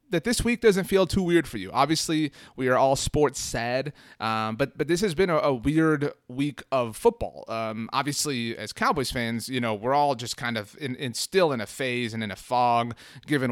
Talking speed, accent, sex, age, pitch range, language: 220 wpm, American, male, 30-49, 115-150 Hz, English